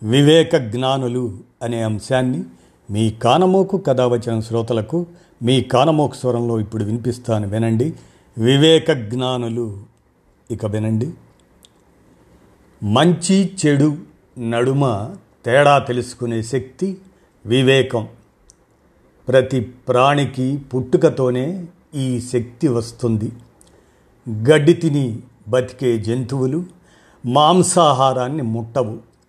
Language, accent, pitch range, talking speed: Telugu, native, 115-150 Hz, 75 wpm